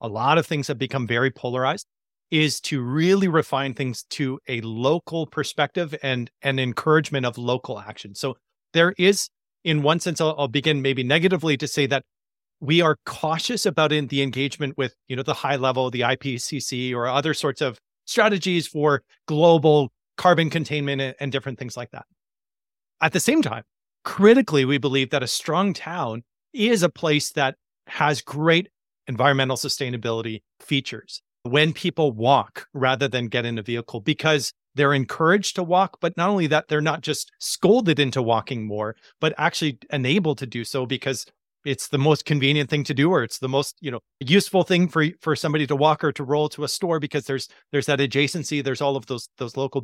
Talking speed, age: 185 wpm, 30-49